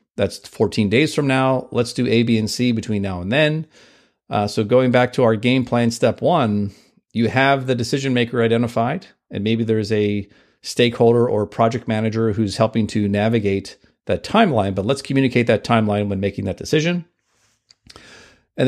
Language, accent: English, American